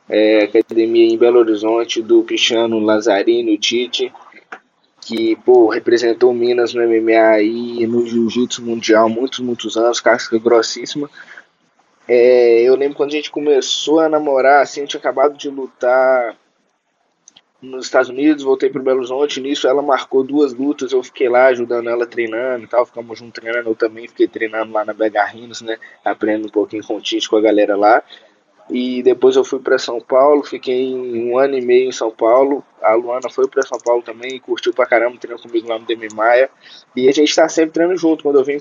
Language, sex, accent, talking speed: Portuguese, male, Brazilian, 195 wpm